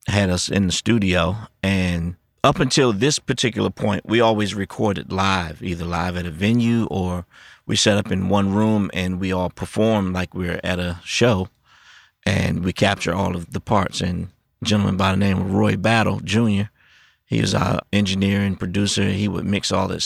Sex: male